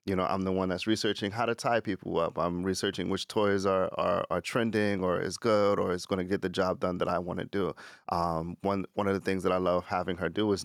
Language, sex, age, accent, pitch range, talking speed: English, male, 30-49, American, 85-95 Hz, 275 wpm